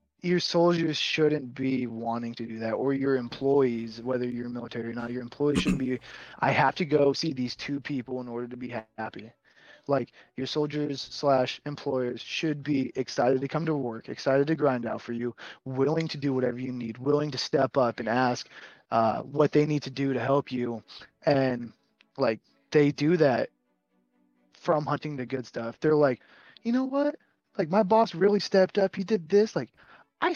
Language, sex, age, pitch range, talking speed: English, male, 20-39, 120-150 Hz, 195 wpm